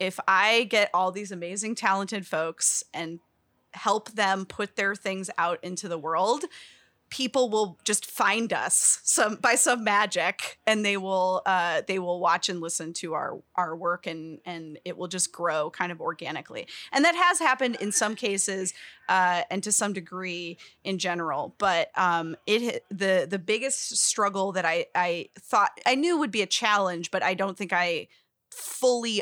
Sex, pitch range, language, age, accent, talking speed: female, 175-210 Hz, English, 20-39, American, 175 wpm